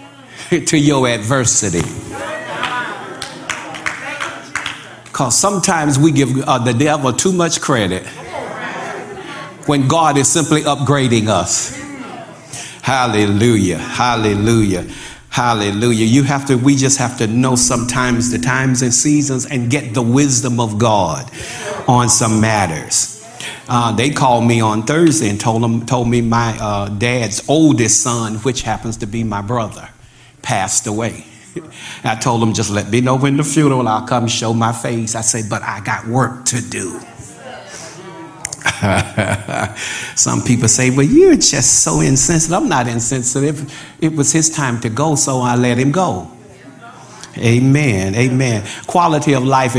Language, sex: English, male